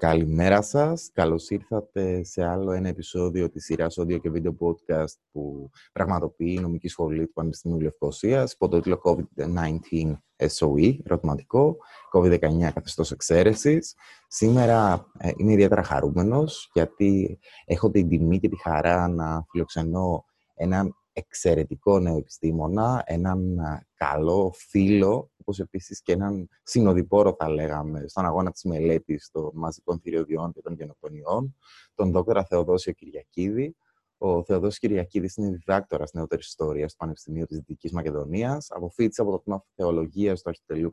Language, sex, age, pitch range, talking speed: Greek, male, 20-39, 80-100 Hz, 135 wpm